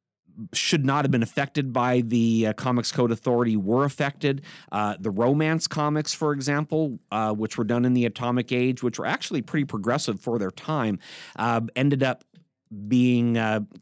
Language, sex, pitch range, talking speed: English, male, 105-125 Hz, 170 wpm